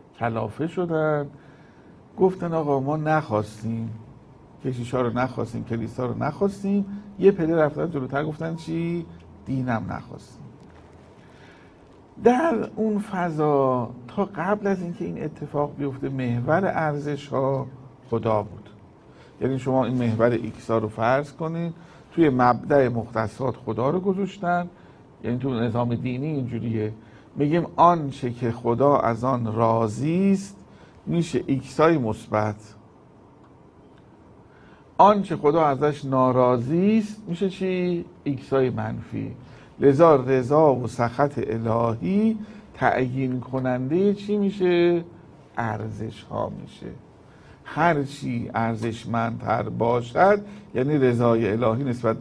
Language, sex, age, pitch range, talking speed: Persian, male, 50-69, 115-165 Hz, 105 wpm